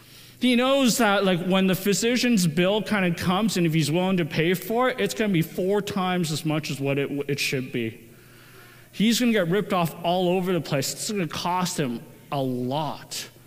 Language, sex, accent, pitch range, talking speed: English, male, American, 155-225 Hz, 225 wpm